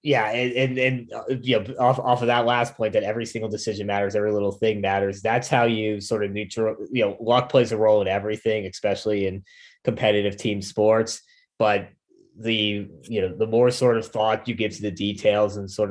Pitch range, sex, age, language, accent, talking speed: 100-120 Hz, male, 20-39, English, American, 210 wpm